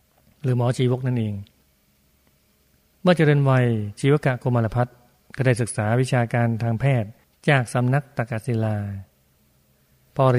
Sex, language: male, Thai